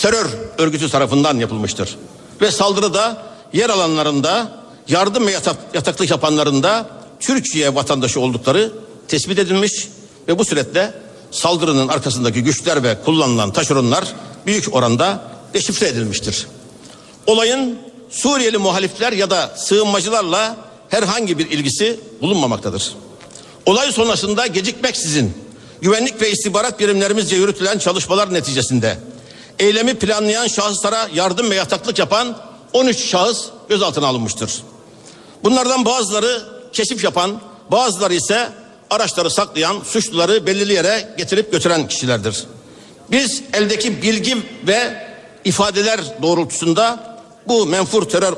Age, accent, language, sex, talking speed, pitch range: 60-79, native, Turkish, male, 105 wpm, 165-225 Hz